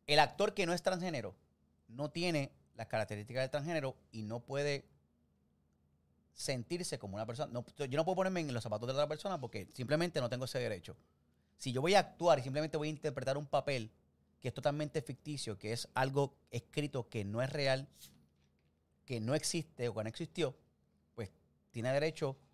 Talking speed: 190 wpm